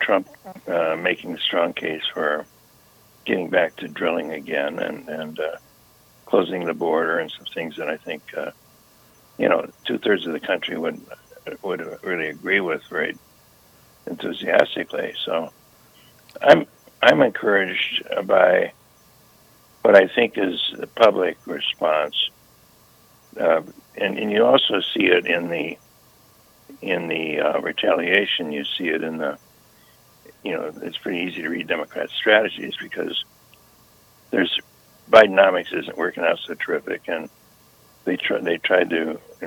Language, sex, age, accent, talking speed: English, male, 60-79, American, 140 wpm